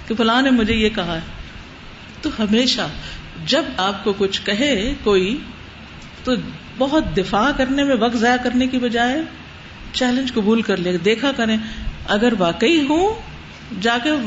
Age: 50-69